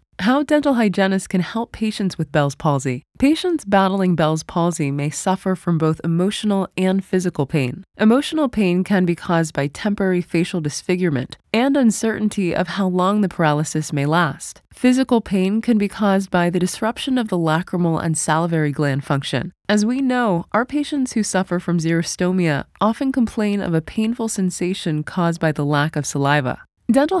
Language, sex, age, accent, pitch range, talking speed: English, female, 20-39, American, 165-215 Hz, 170 wpm